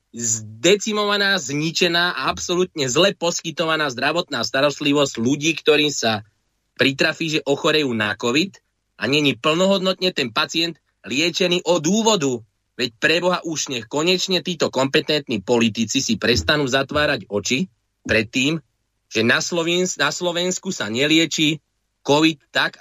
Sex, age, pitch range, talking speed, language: male, 30-49, 125-180 Hz, 115 wpm, Slovak